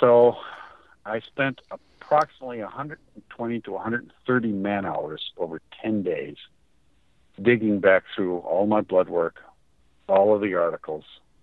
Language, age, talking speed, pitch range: English, 60-79, 120 wpm, 90-120 Hz